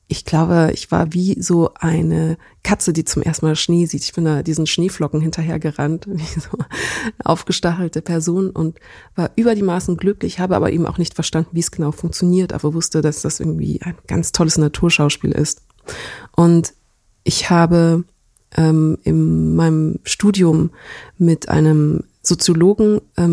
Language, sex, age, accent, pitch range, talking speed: German, female, 30-49, German, 155-180 Hz, 160 wpm